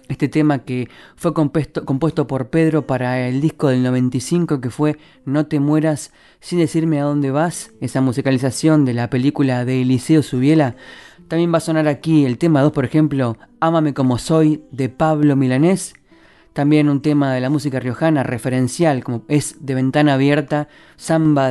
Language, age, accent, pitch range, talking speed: Spanish, 20-39, Argentinian, 135-160 Hz, 170 wpm